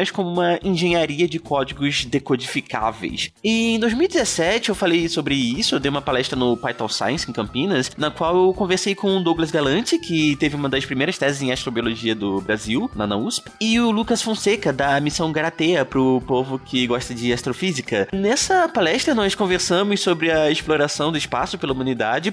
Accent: Brazilian